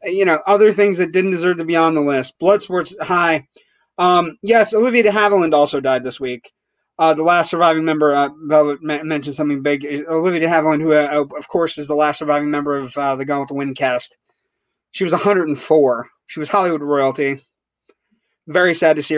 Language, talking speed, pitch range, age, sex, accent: English, 195 wpm, 145-190 Hz, 30-49, male, American